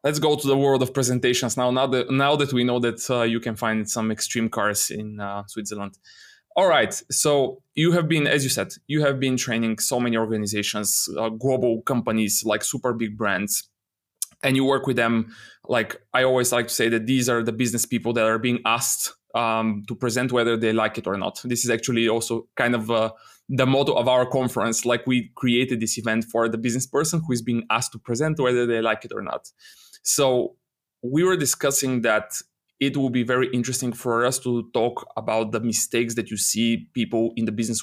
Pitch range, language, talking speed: 115-135 Hz, English, 215 wpm